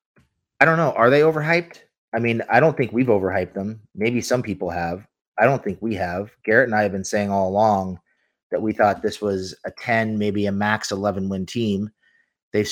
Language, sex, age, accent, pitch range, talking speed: English, male, 30-49, American, 100-120 Hz, 210 wpm